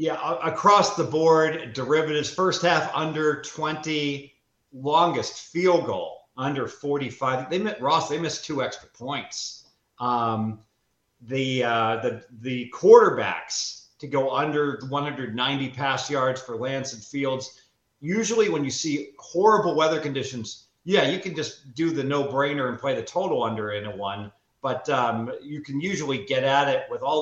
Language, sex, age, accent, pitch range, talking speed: English, male, 40-59, American, 125-165 Hz, 155 wpm